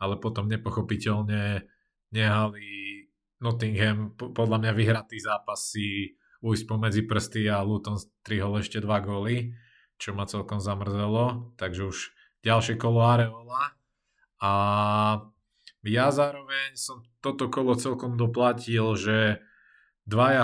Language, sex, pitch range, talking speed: Slovak, male, 100-115 Hz, 110 wpm